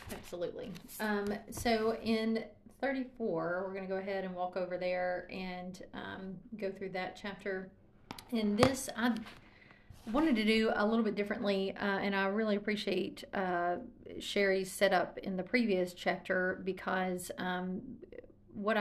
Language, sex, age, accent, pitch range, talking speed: English, female, 40-59, American, 185-205 Hz, 140 wpm